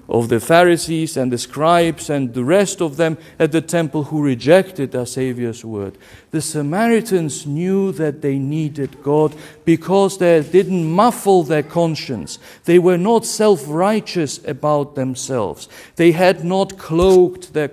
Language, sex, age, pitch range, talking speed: English, male, 50-69, 140-195 Hz, 145 wpm